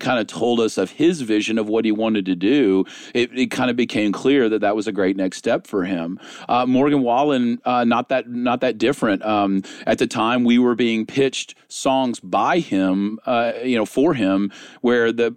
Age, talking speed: 40-59, 215 wpm